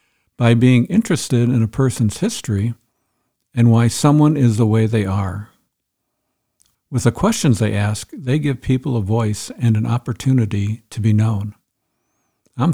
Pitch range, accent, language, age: 105-125 Hz, American, English, 60-79